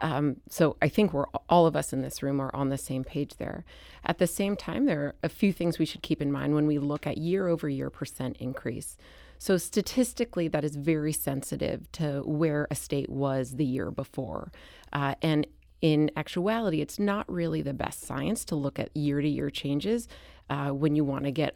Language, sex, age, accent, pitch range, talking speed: English, female, 30-49, American, 140-160 Hz, 205 wpm